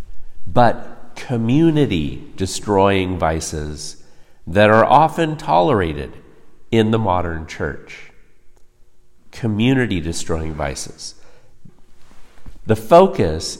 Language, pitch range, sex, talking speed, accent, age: English, 90-130 Hz, male, 65 wpm, American, 50-69